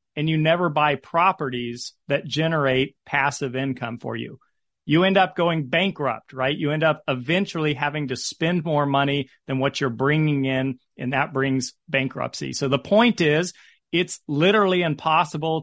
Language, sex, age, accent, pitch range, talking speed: English, male, 40-59, American, 135-165 Hz, 160 wpm